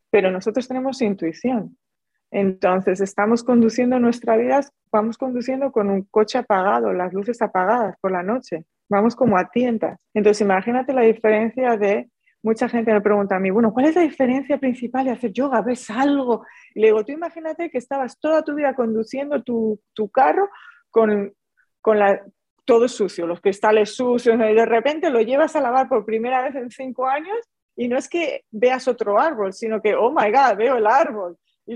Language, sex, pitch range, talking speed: Spanish, female, 205-260 Hz, 185 wpm